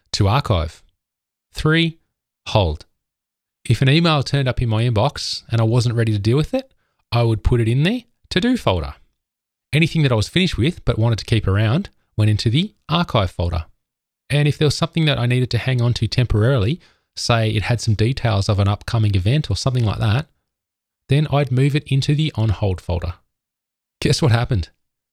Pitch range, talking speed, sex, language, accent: 105-140 Hz, 195 wpm, male, English, Australian